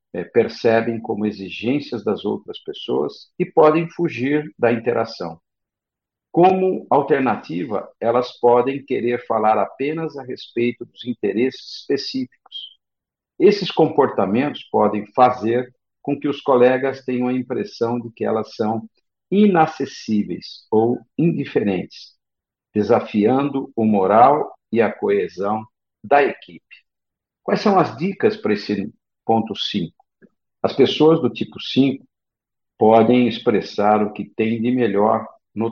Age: 50-69